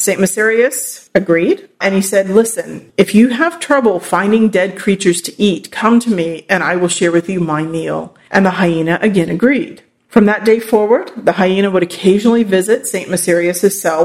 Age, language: 40-59, English